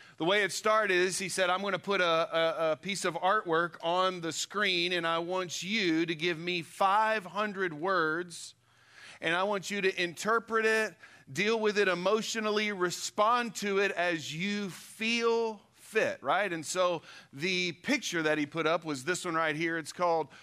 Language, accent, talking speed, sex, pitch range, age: English, American, 185 wpm, male, 160-200 Hz, 40-59